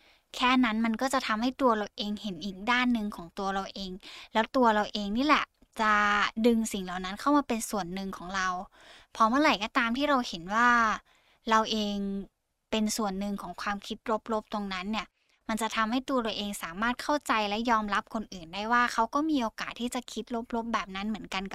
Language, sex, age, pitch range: Thai, female, 10-29, 200-245 Hz